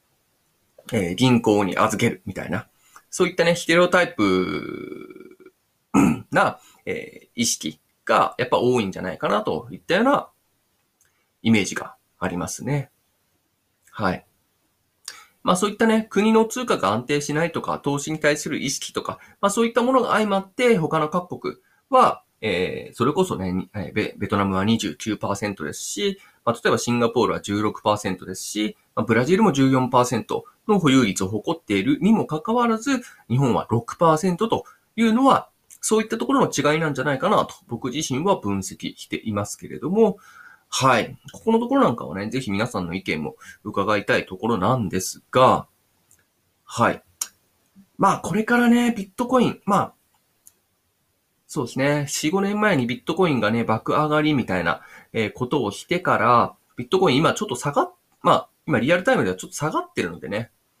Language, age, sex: Japanese, 20-39, male